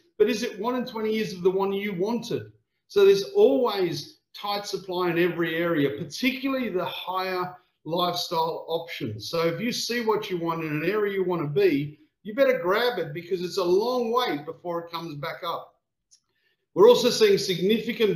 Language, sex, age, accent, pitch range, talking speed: English, male, 50-69, Australian, 165-220 Hz, 190 wpm